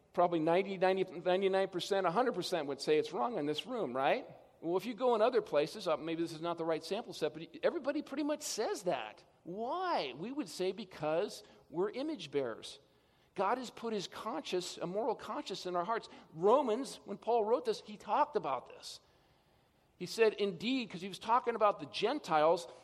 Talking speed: 185 wpm